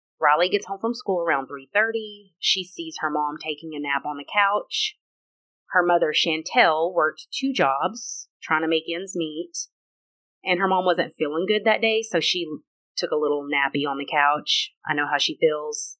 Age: 30-49